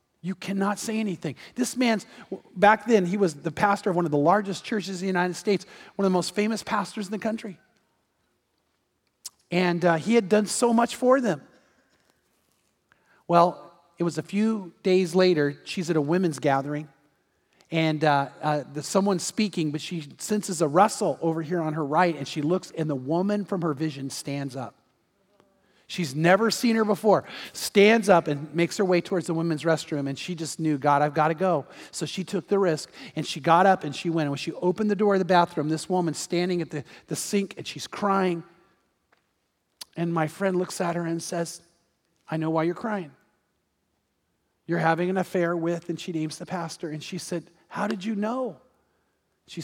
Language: English